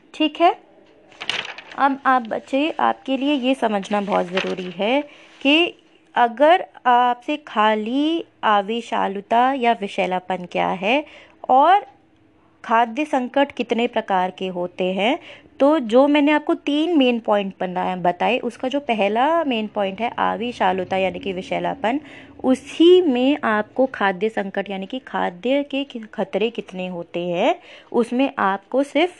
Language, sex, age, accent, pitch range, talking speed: Hindi, female, 20-39, native, 200-275 Hz, 130 wpm